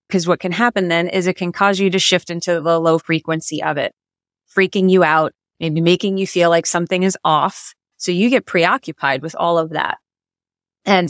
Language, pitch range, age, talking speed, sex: English, 170-200 Hz, 20-39, 205 wpm, female